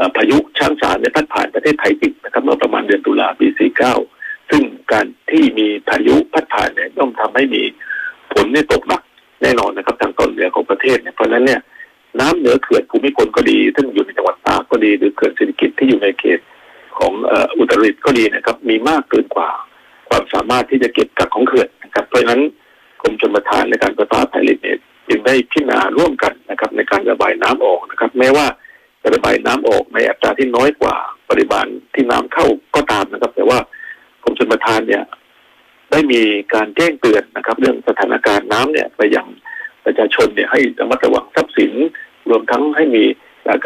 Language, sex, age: Thai, male, 60-79